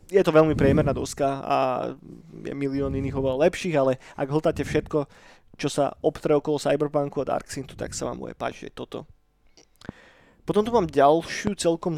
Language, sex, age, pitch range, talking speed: Slovak, male, 20-39, 145-175 Hz, 165 wpm